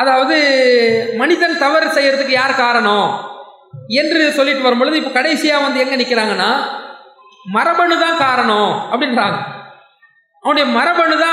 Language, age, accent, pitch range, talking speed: English, 20-39, Indian, 250-310 Hz, 90 wpm